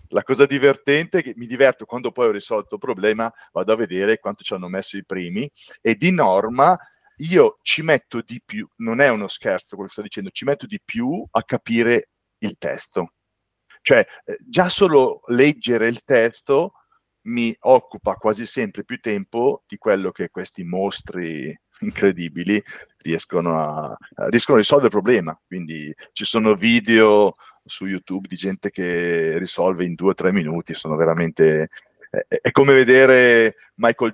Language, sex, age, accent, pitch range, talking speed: Italian, male, 40-59, native, 100-150 Hz, 160 wpm